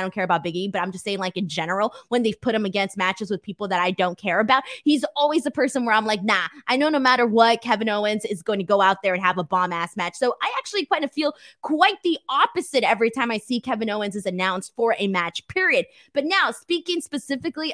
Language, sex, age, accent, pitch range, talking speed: English, female, 20-39, American, 205-280 Hz, 260 wpm